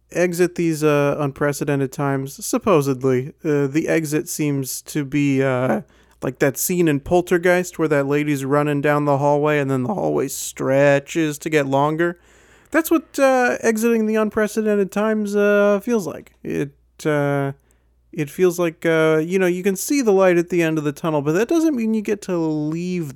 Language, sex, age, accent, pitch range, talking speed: English, male, 30-49, American, 130-180 Hz, 180 wpm